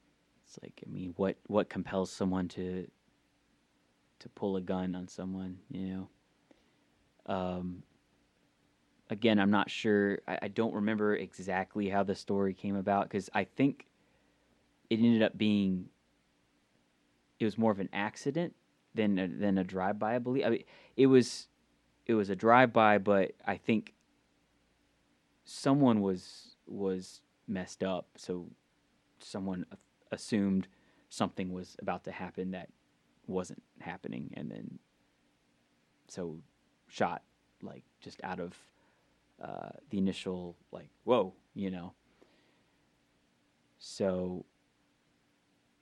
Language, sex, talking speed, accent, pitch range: English, male, 125 wpm, American, 90-105 Hz